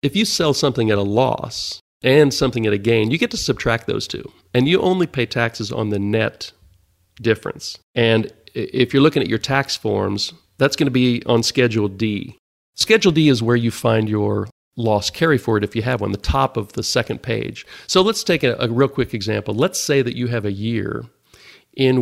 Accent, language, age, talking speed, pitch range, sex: American, English, 40-59, 215 wpm, 110-135 Hz, male